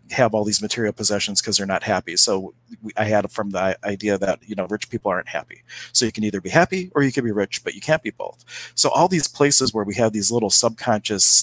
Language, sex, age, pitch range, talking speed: English, male, 40-59, 100-115 Hz, 250 wpm